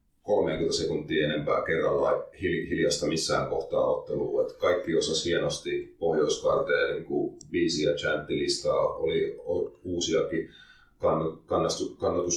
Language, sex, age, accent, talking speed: Finnish, male, 30-49, native, 95 wpm